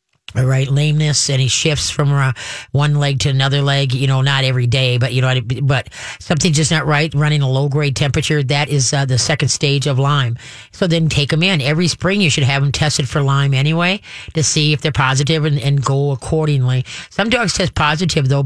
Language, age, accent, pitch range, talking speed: English, 40-59, American, 130-160 Hz, 220 wpm